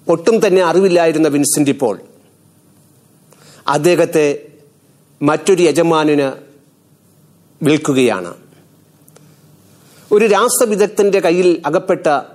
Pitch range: 145-180 Hz